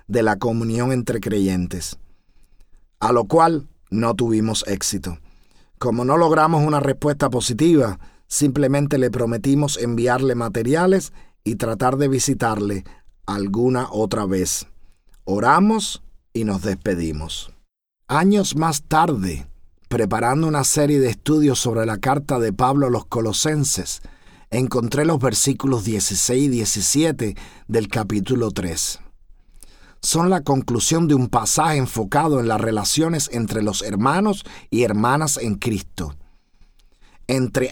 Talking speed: 120 wpm